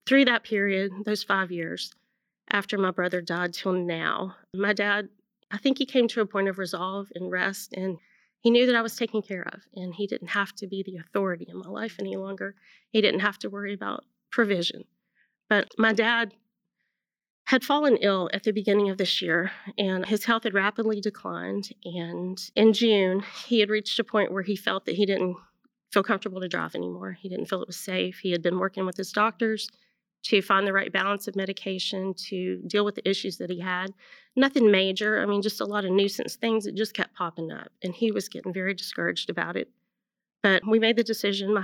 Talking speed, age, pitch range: 215 wpm, 30-49, 185-215 Hz